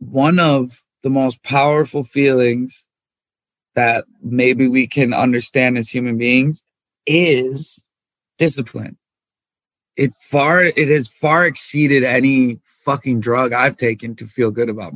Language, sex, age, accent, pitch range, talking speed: English, male, 20-39, American, 125-155 Hz, 125 wpm